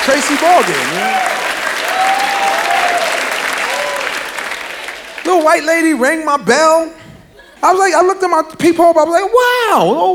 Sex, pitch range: male, 260-370 Hz